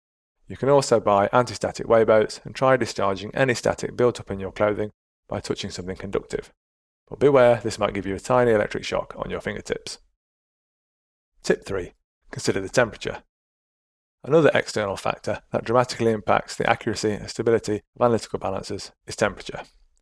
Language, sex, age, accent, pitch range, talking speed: English, male, 30-49, British, 100-120 Hz, 160 wpm